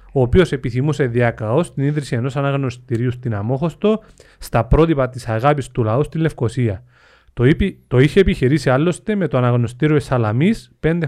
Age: 30-49